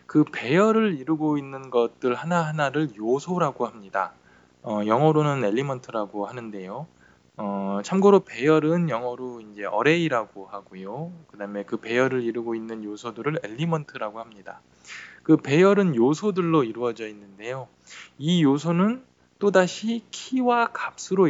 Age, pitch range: 20-39, 115-170 Hz